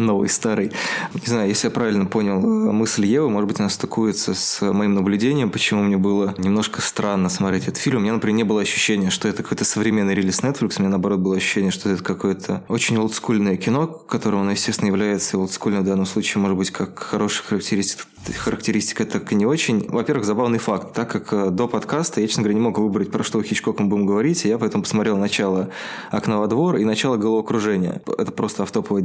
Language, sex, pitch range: Russian, male, 100-115 Hz